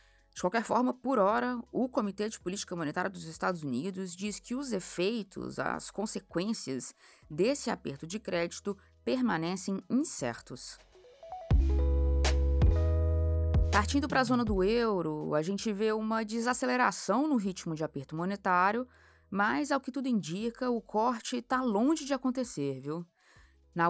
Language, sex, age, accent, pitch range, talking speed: Portuguese, female, 20-39, Brazilian, 160-230 Hz, 135 wpm